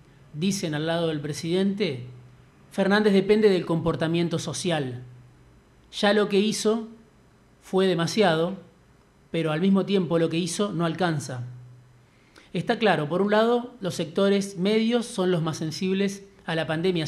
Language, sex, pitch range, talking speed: Spanish, male, 160-195 Hz, 140 wpm